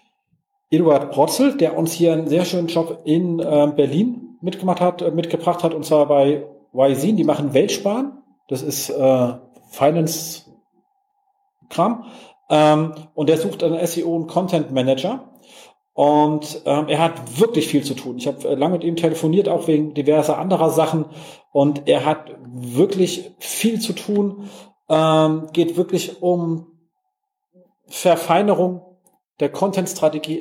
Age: 40-59